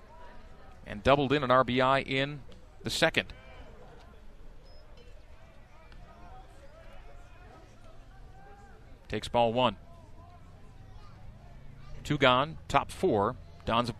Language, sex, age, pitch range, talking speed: English, male, 40-59, 105-130 Hz, 75 wpm